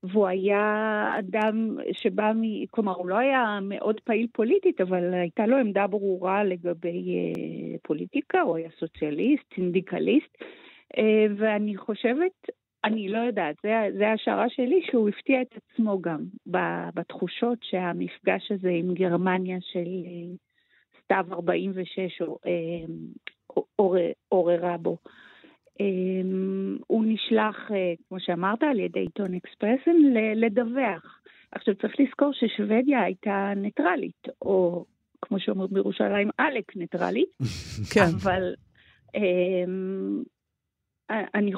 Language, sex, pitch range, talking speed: Hebrew, female, 185-225 Hz, 100 wpm